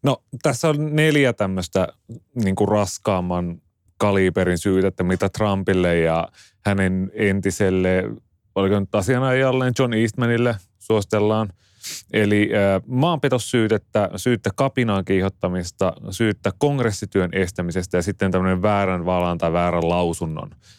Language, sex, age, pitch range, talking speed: Finnish, male, 30-49, 90-110 Hz, 110 wpm